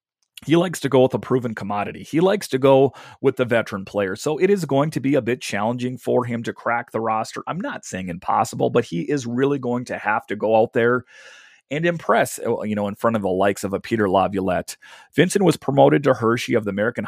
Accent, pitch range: American, 110-135 Hz